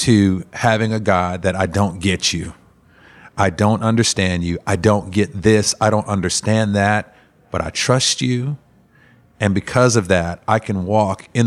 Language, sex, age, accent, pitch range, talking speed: English, male, 40-59, American, 95-110 Hz, 175 wpm